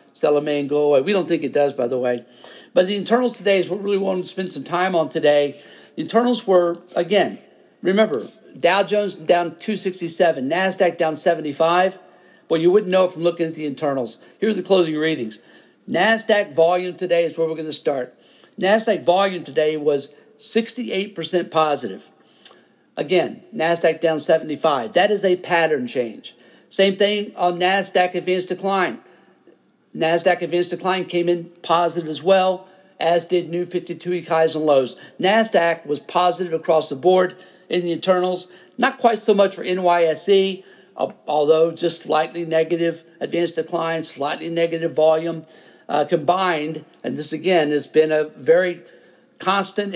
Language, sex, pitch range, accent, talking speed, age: English, male, 160-190 Hz, American, 155 wpm, 50-69